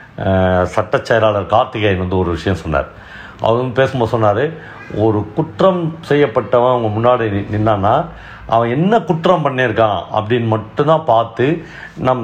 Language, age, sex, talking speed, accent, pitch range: Tamil, 60-79, male, 120 wpm, native, 95-145 Hz